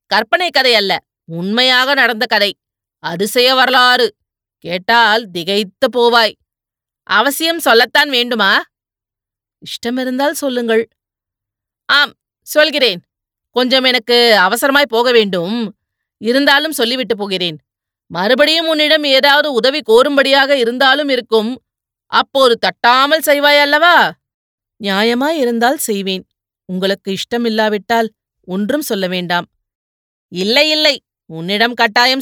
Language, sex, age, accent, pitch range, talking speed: Tamil, female, 30-49, native, 190-265 Hz, 90 wpm